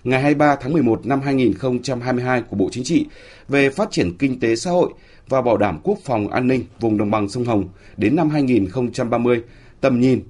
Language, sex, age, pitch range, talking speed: Vietnamese, male, 30-49, 110-145 Hz, 200 wpm